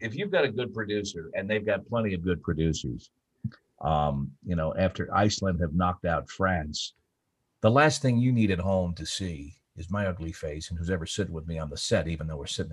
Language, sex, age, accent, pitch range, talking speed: English, male, 50-69, American, 80-110 Hz, 225 wpm